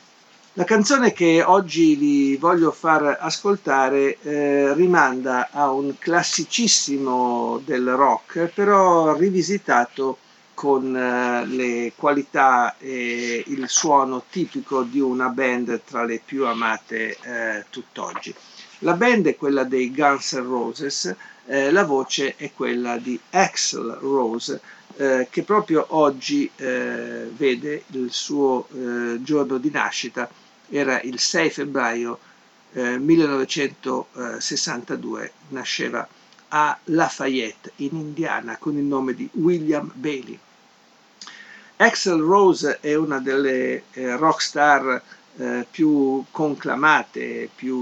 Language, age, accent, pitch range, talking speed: Italian, 50-69, native, 130-155 Hz, 115 wpm